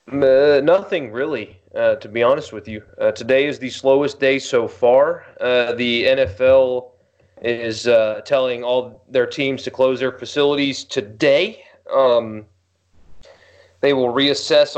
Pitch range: 125-185 Hz